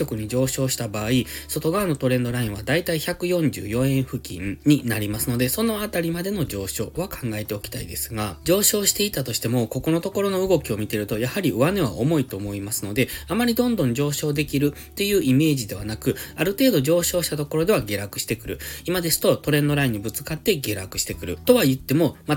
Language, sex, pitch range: Japanese, male, 115-165 Hz